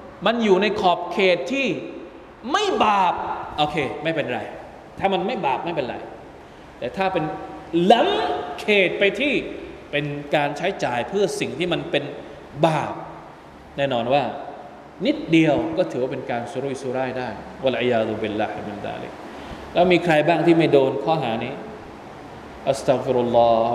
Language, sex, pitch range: Thai, male, 150-195 Hz